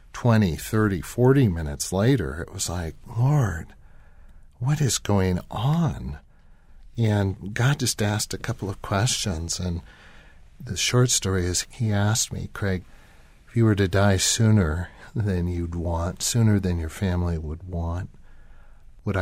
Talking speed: 145 wpm